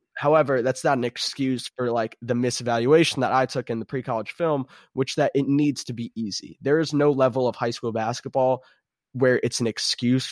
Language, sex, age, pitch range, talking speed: English, male, 20-39, 120-140 Hz, 205 wpm